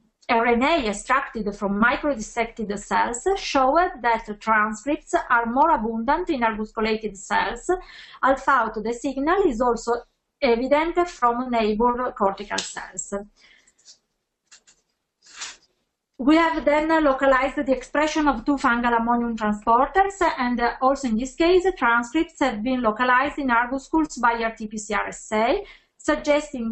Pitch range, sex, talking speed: 220-295 Hz, female, 115 wpm